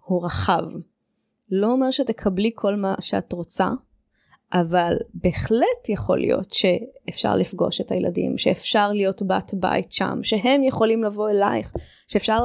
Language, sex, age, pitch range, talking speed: Hebrew, female, 20-39, 180-225 Hz, 130 wpm